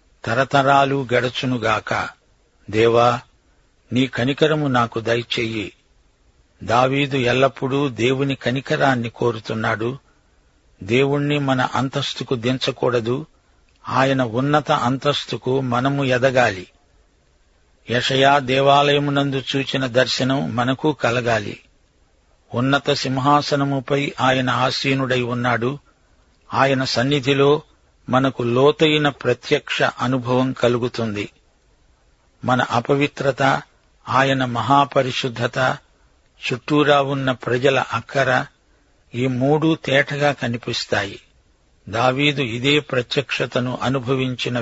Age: 50-69